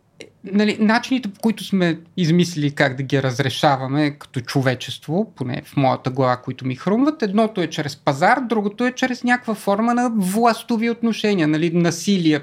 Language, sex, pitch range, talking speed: Bulgarian, male, 155-215 Hz, 160 wpm